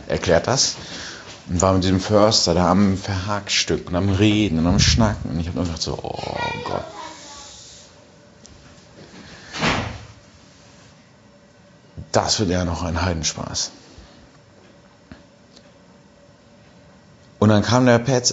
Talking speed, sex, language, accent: 115 wpm, male, German, German